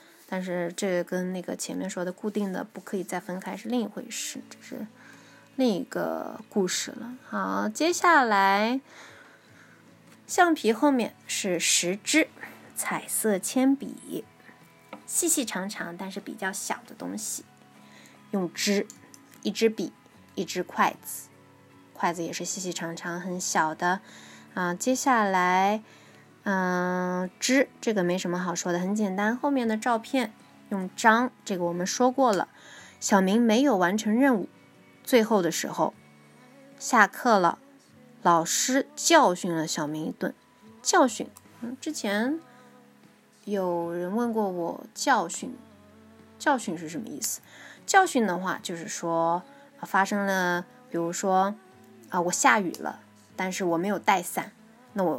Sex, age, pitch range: female, 20-39, 180-245 Hz